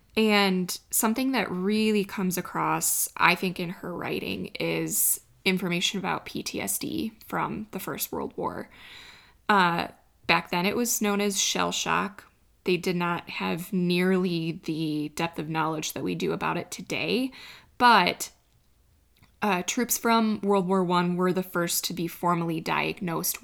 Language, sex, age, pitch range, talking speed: English, female, 20-39, 170-215 Hz, 150 wpm